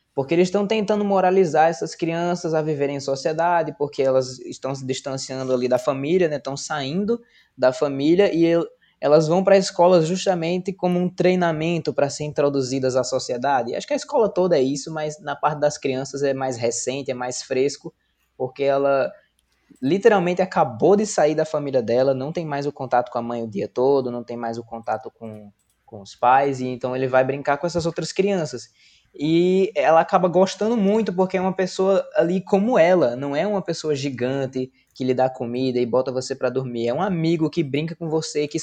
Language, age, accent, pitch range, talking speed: Portuguese, 20-39, Brazilian, 130-175 Hz, 200 wpm